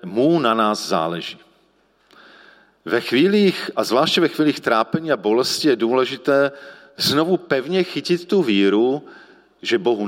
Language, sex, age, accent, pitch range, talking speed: Czech, male, 40-59, native, 115-155 Hz, 130 wpm